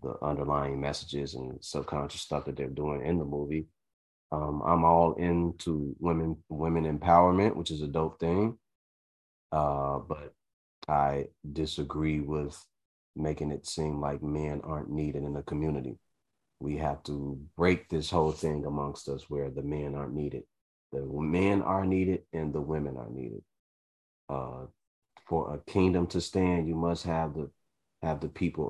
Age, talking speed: 30-49, 155 wpm